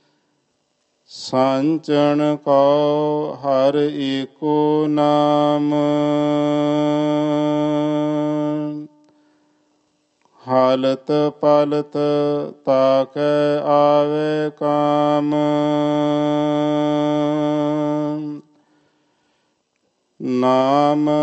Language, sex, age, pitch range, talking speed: Punjabi, male, 50-69, 145-150 Hz, 30 wpm